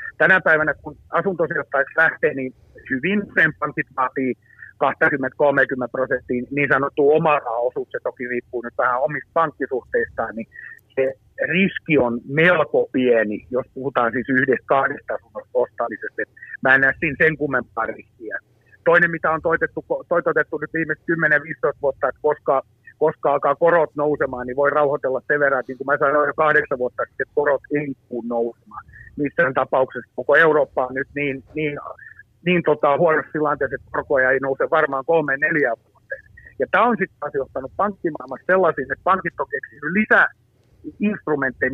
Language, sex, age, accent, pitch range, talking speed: Finnish, male, 50-69, native, 135-175 Hz, 150 wpm